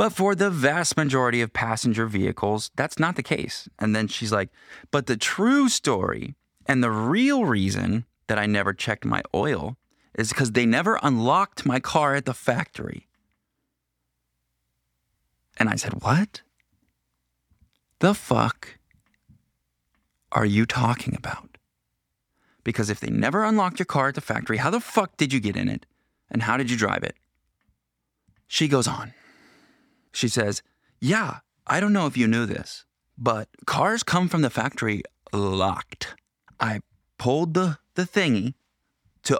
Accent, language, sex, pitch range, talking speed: American, English, male, 105-145 Hz, 150 wpm